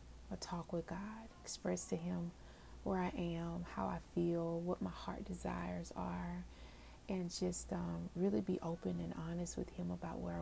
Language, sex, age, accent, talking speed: English, female, 30-49, American, 165 wpm